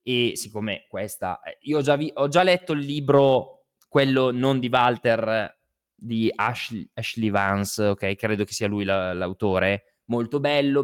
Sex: male